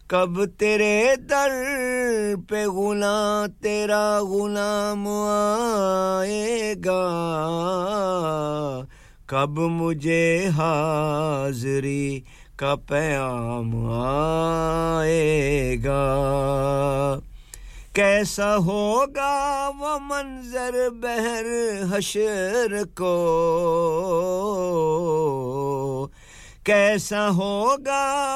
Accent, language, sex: Indian, English, male